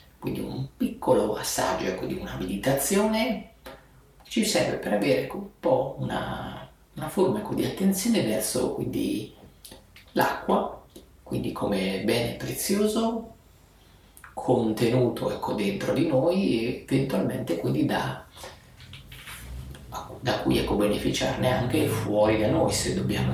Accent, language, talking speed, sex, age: native, Italian, 120 wpm, male, 30-49